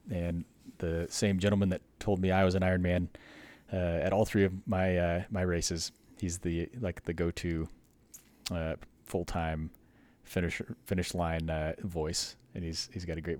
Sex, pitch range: male, 80-100 Hz